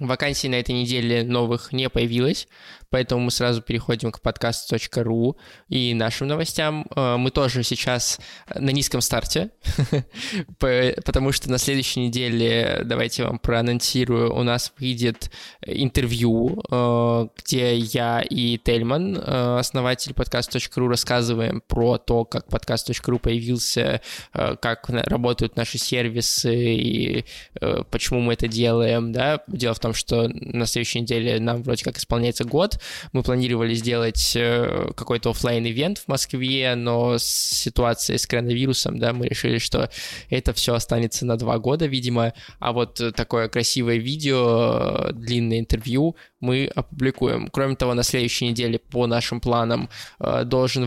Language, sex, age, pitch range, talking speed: Russian, male, 20-39, 115-130 Hz, 130 wpm